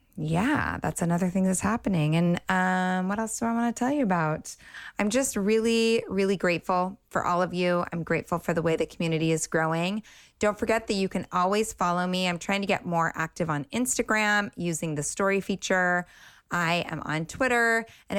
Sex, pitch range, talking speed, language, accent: female, 160-205 Hz, 200 wpm, English, American